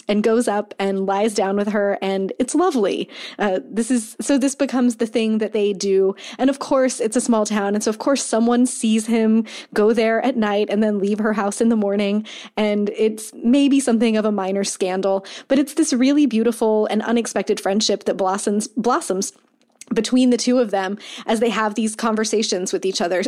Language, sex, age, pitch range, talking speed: English, female, 20-39, 200-240 Hz, 205 wpm